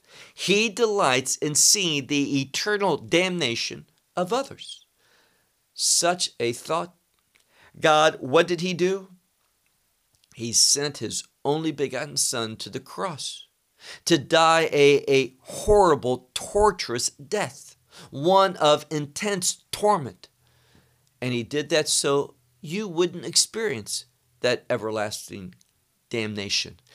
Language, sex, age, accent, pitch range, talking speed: English, male, 50-69, American, 125-180 Hz, 105 wpm